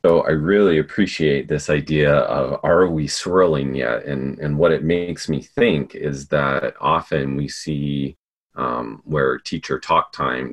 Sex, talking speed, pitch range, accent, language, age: male, 160 wpm, 70-80 Hz, American, English, 30-49